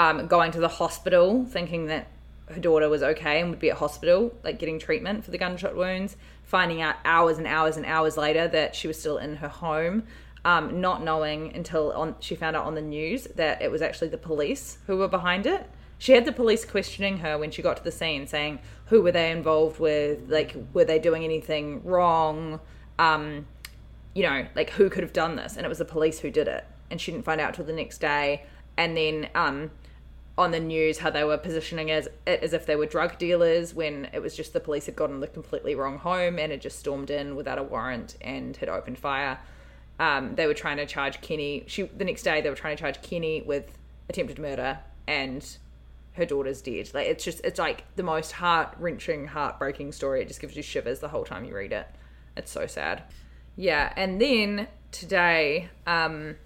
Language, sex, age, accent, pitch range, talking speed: English, female, 20-39, Australian, 150-175 Hz, 215 wpm